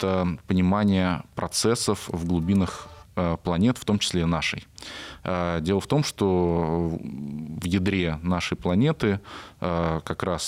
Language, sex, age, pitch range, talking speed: Russian, male, 20-39, 85-100 Hz, 115 wpm